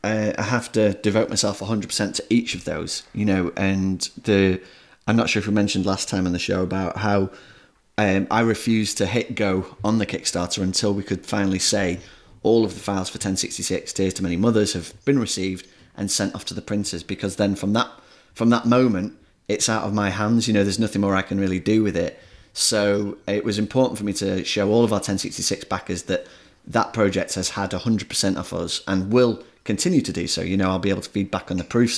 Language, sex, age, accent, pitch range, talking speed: English, male, 30-49, British, 95-110 Hz, 235 wpm